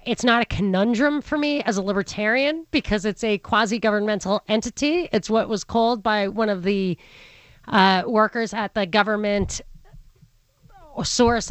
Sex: female